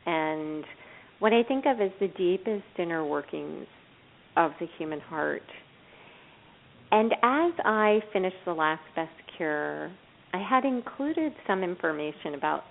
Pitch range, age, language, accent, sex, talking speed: 155-205 Hz, 40-59, English, American, female, 130 wpm